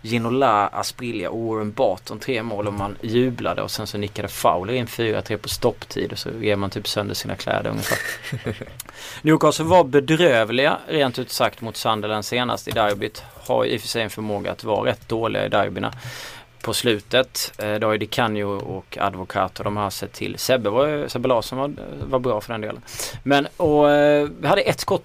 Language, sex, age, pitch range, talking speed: Swedish, male, 30-49, 110-135 Hz, 195 wpm